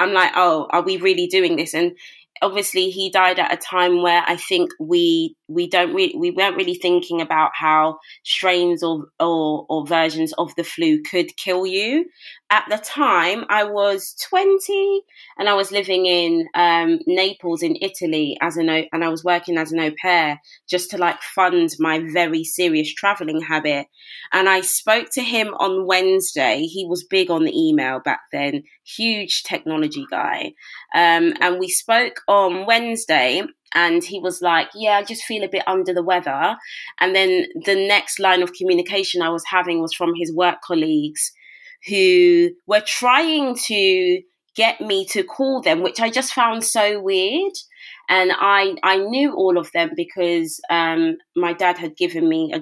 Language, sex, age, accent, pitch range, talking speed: English, female, 20-39, British, 170-265 Hz, 180 wpm